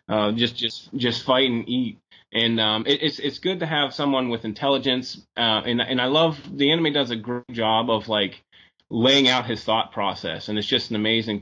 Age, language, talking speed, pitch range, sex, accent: 20-39, English, 215 wpm, 105-125 Hz, male, American